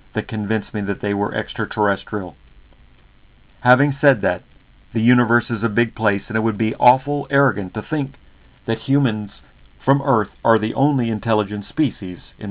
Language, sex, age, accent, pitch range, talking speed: English, male, 50-69, American, 95-125 Hz, 165 wpm